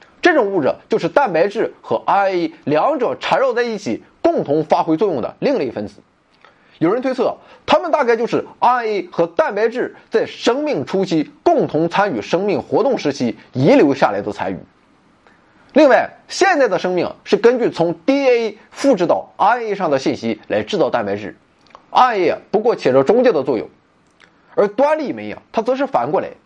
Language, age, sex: Chinese, 30-49, male